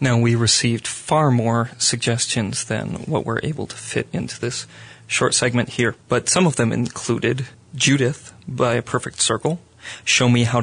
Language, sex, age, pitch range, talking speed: English, male, 30-49, 120-135 Hz, 170 wpm